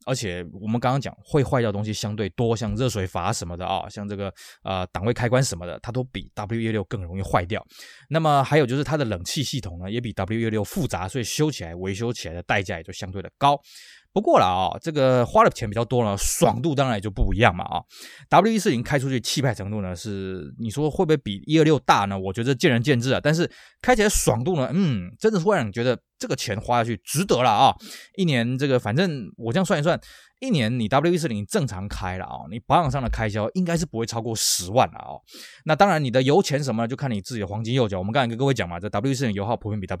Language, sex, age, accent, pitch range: Chinese, male, 20-39, native, 100-140 Hz